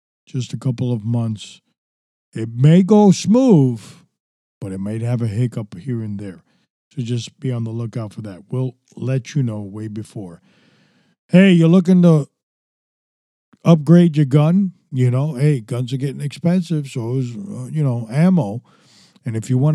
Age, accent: 50-69, American